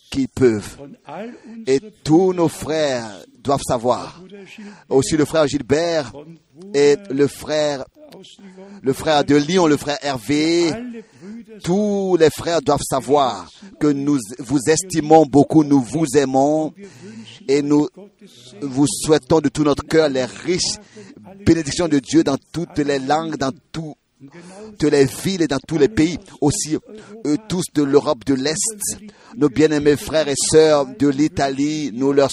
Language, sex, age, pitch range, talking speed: French, male, 50-69, 140-190 Hz, 145 wpm